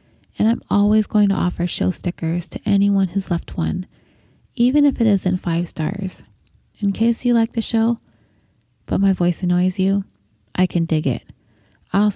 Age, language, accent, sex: 30-49, English, American, female